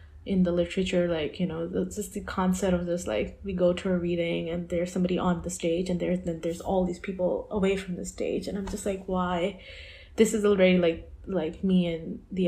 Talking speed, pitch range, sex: 225 wpm, 175-210 Hz, female